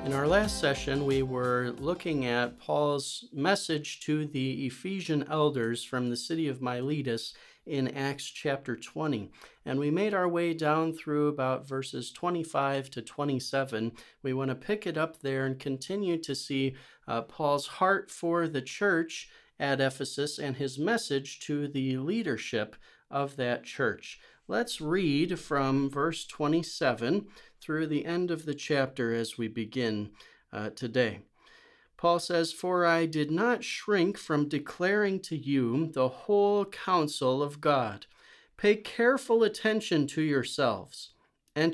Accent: American